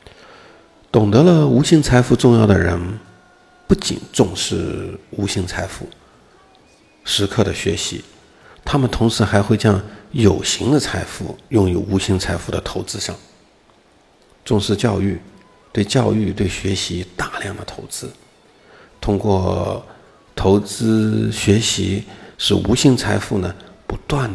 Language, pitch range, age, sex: Chinese, 95-120 Hz, 50-69, male